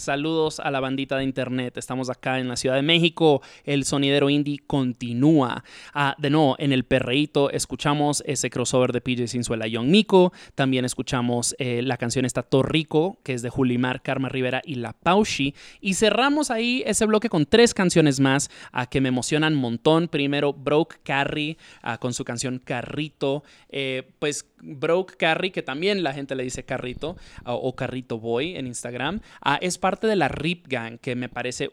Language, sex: English, male